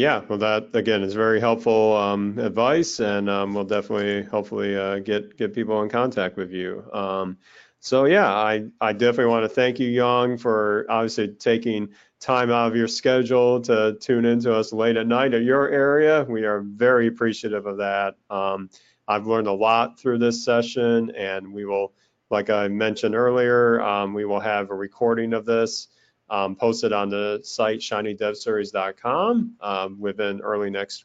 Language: English